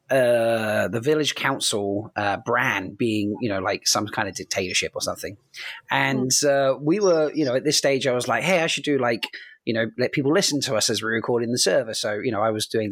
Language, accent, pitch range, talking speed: English, British, 110-150 Hz, 235 wpm